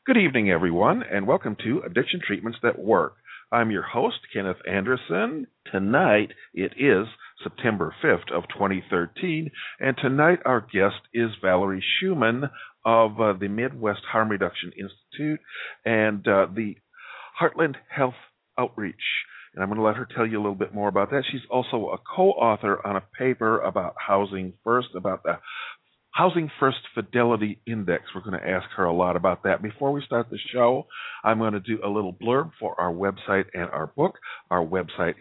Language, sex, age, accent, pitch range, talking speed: English, male, 50-69, American, 95-125 Hz, 170 wpm